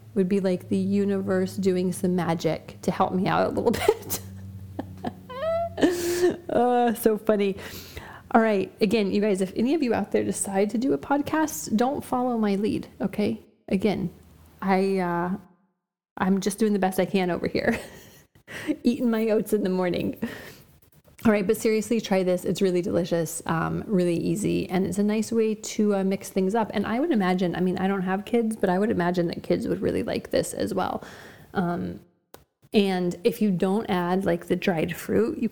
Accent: American